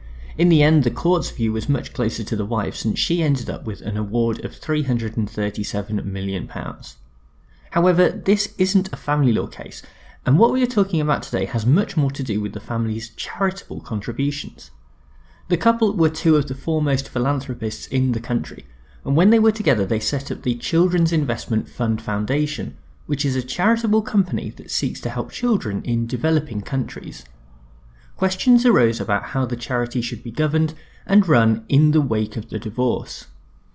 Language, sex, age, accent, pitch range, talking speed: English, male, 30-49, British, 110-150 Hz, 180 wpm